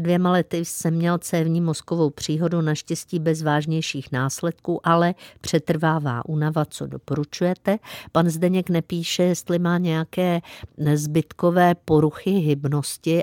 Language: Czech